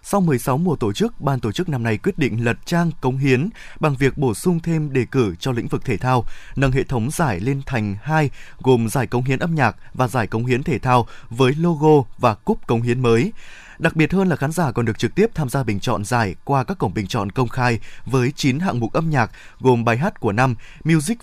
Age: 20-39